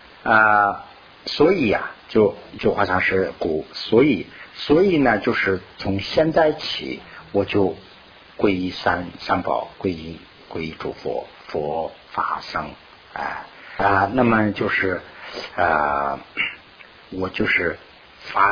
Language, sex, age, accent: Chinese, male, 50-69, native